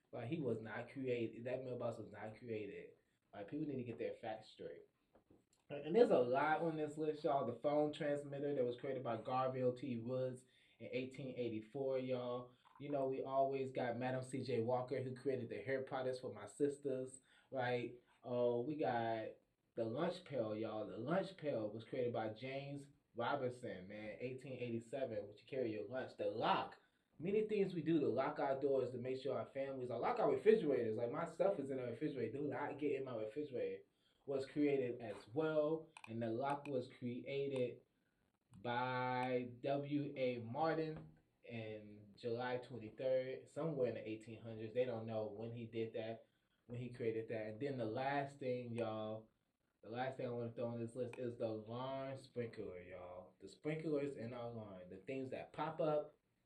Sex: male